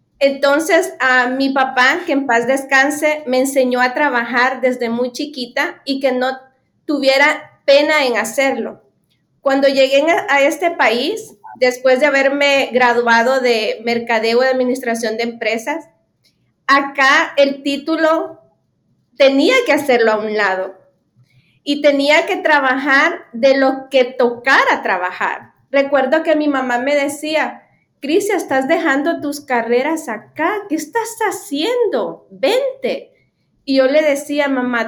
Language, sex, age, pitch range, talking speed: Spanish, female, 30-49, 250-305 Hz, 130 wpm